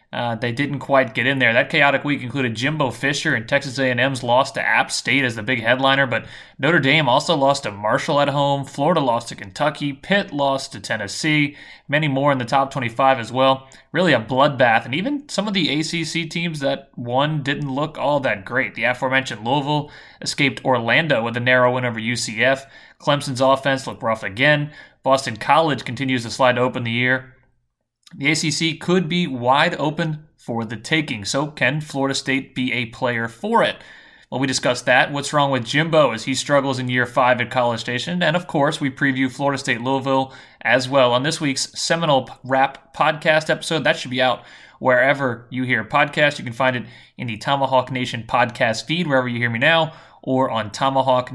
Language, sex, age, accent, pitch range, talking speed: English, male, 30-49, American, 125-150 Hz, 195 wpm